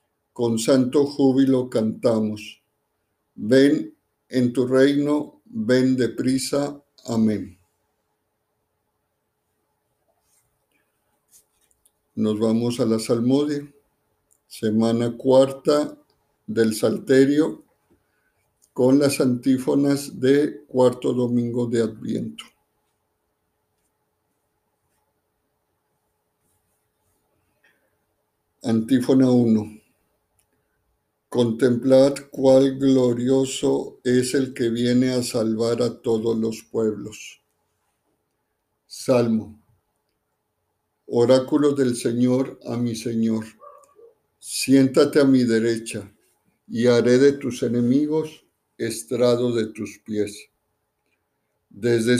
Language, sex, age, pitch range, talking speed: Spanish, male, 60-79, 115-135 Hz, 75 wpm